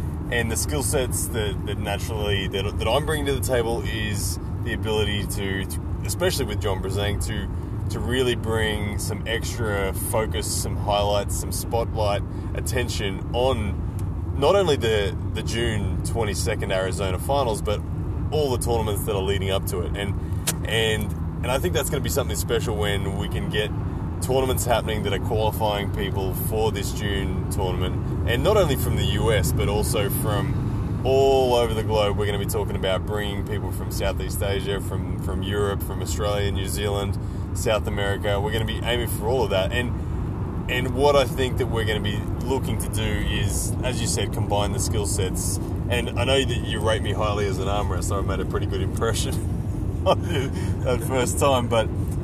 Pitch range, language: 95-110 Hz, English